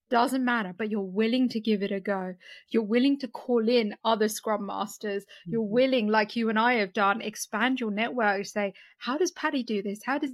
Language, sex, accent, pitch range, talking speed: English, female, British, 210-255 Hz, 215 wpm